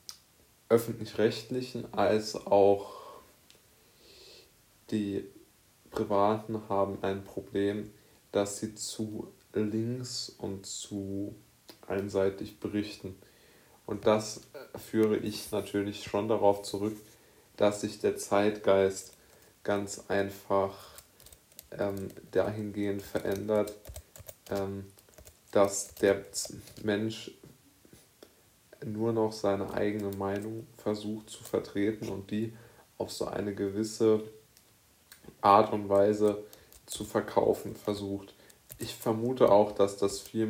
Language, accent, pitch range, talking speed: German, German, 100-110 Hz, 95 wpm